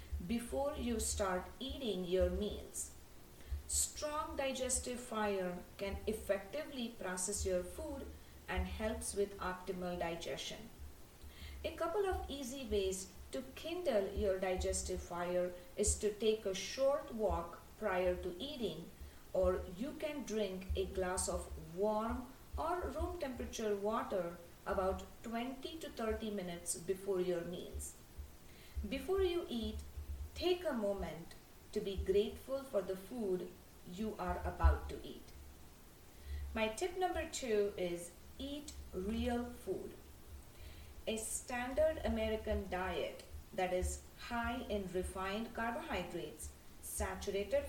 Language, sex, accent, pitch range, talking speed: English, female, Indian, 175-240 Hz, 120 wpm